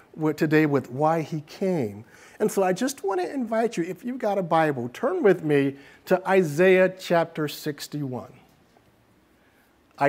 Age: 50-69